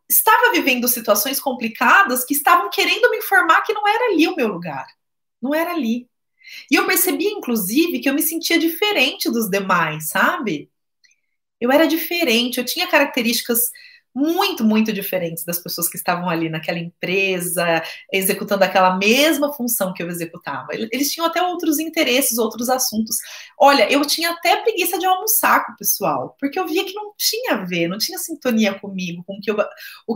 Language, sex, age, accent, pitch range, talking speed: Portuguese, female, 20-39, Brazilian, 200-300 Hz, 175 wpm